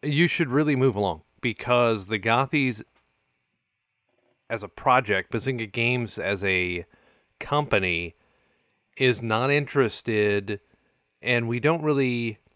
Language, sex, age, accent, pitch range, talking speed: English, male, 30-49, American, 105-145 Hz, 110 wpm